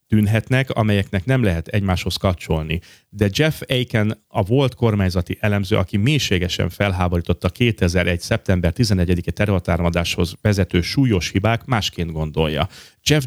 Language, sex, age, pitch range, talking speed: Hungarian, male, 30-49, 90-110 Hz, 120 wpm